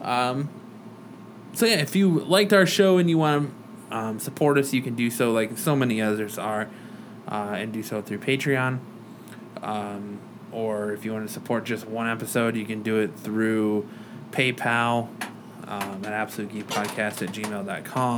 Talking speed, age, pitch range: 170 wpm, 20-39, 110-140 Hz